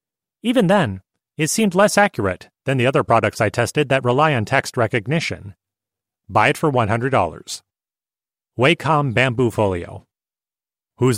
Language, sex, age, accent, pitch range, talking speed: English, male, 30-49, American, 120-170 Hz, 135 wpm